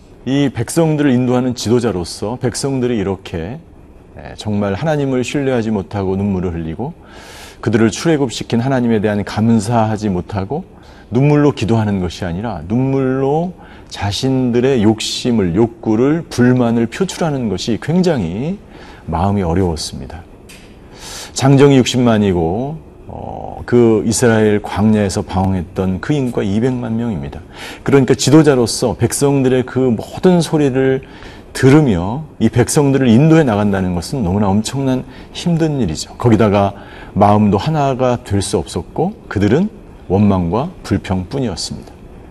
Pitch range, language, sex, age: 100-130 Hz, Korean, male, 40-59